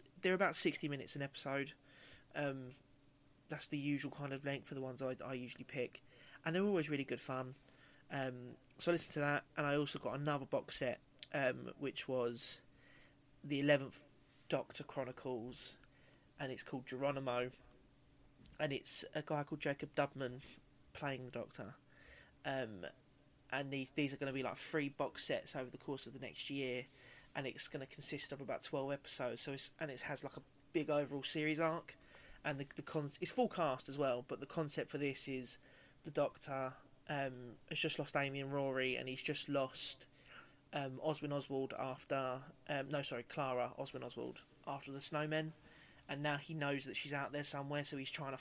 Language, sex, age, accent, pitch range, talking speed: English, male, 20-39, British, 135-150 Hz, 190 wpm